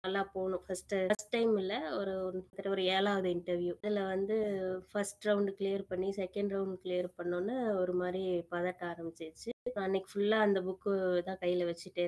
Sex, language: female, Tamil